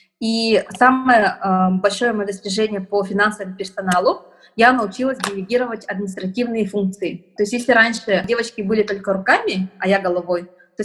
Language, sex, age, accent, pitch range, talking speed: Russian, female, 20-39, native, 195-235 Hz, 140 wpm